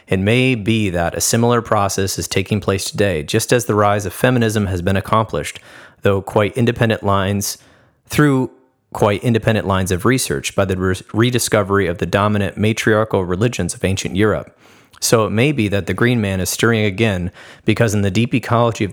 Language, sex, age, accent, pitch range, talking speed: English, male, 30-49, American, 95-115 Hz, 185 wpm